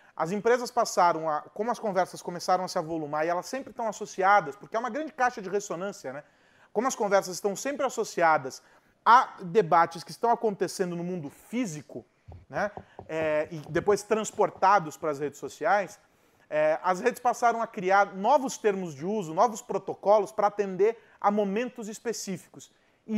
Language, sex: Portuguese, male